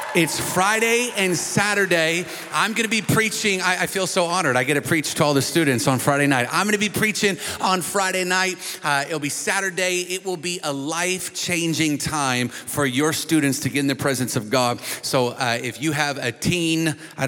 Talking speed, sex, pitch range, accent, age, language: 210 wpm, male, 130-165 Hz, American, 30-49, English